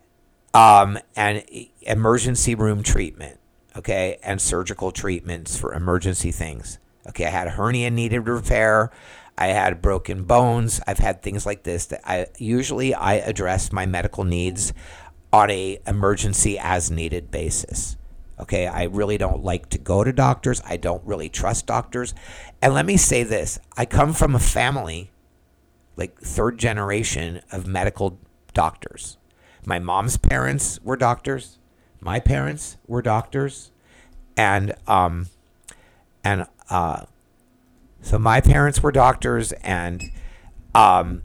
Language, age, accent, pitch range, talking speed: English, 50-69, American, 85-115 Hz, 135 wpm